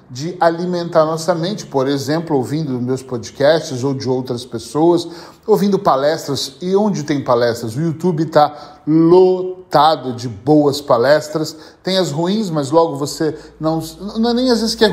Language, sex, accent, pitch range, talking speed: Portuguese, male, Brazilian, 135-180 Hz, 160 wpm